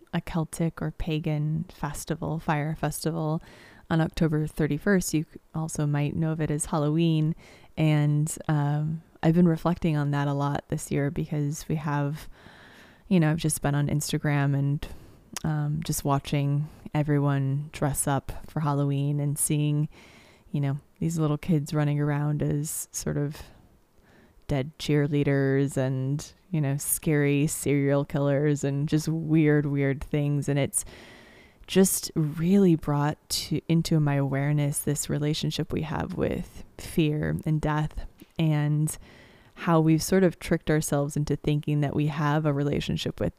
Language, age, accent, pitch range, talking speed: English, 20-39, American, 145-160 Hz, 145 wpm